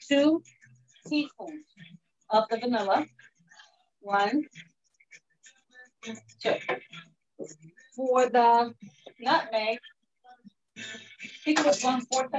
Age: 40-59